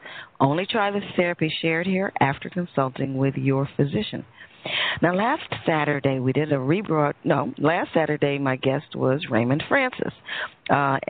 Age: 40-59